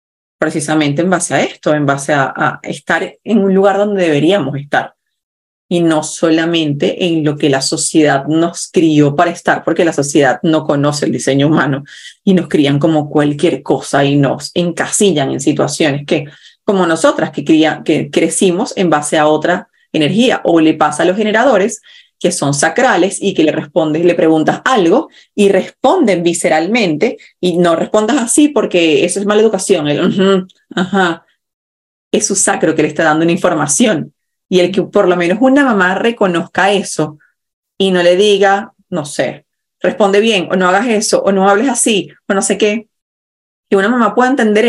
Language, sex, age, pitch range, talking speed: Spanish, female, 30-49, 155-200 Hz, 180 wpm